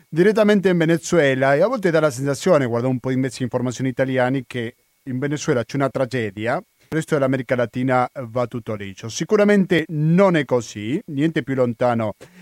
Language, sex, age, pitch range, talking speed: Italian, male, 40-59, 125-160 Hz, 180 wpm